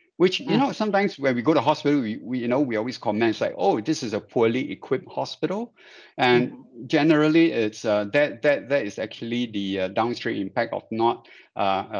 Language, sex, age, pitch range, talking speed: English, male, 60-79, 110-155 Hz, 205 wpm